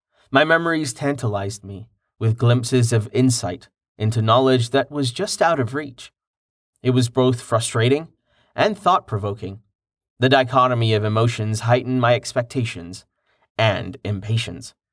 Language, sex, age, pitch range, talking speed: English, male, 30-49, 110-140 Hz, 125 wpm